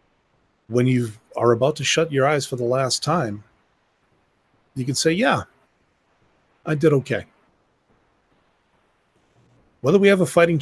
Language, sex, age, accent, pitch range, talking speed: English, male, 30-49, American, 105-130 Hz, 135 wpm